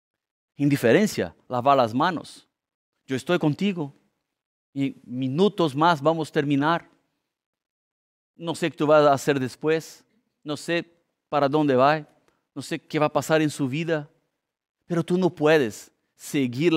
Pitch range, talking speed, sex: 120-155 Hz, 145 wpm, male